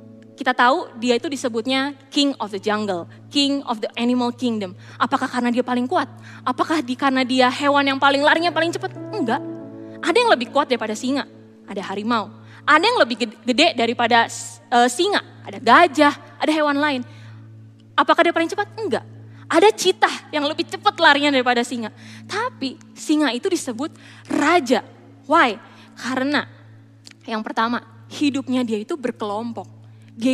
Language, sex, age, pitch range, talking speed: Indonesian, female, 20-39, 205-285 Hz, 155 wpm